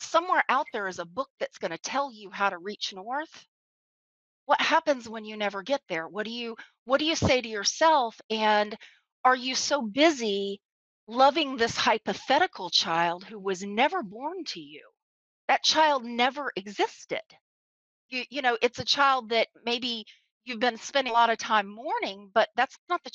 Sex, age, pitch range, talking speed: female, 40-59, 200-260 Hz, 180 wpm